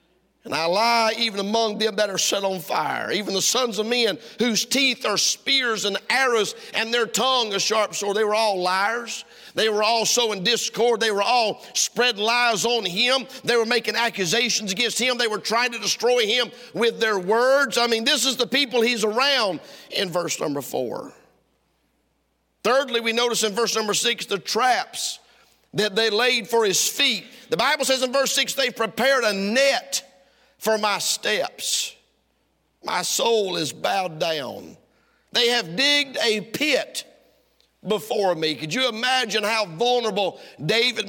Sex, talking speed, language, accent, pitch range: male, 170 wpm, English, American, 215-255 Hz